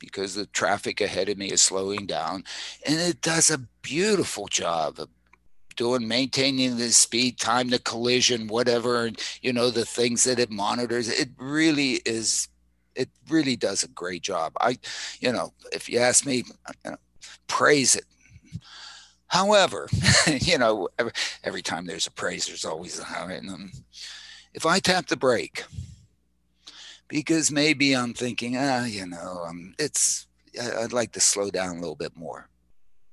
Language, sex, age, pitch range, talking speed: English, male, 50-69, 90-130 Hz, 160 wpm